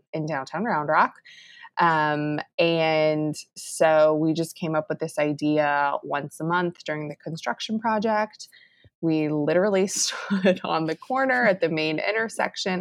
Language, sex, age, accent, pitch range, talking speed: English, female, 20-39, American, 150-195 Hz, 145 wpm